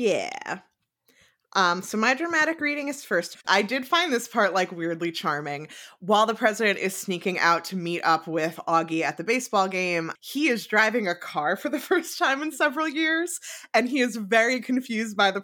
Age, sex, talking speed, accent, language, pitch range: 20-39, female, 195 wpm, American, English, 170-240 Hz